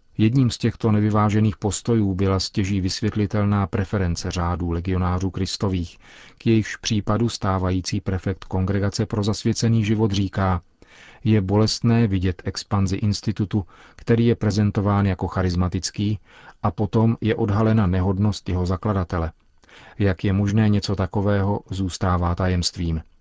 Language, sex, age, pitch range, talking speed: Czech, male, 40-59, 95-105 Hz, 120 wpm